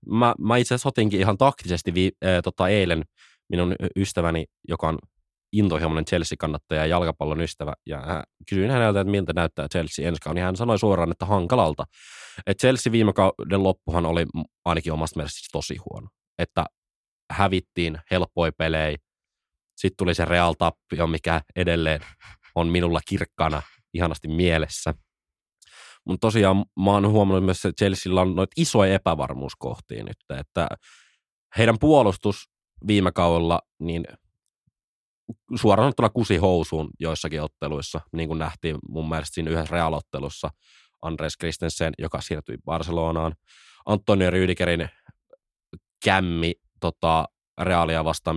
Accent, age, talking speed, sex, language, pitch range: native, 20-39, 130 wpm, male, Finnish, 80-95 Hz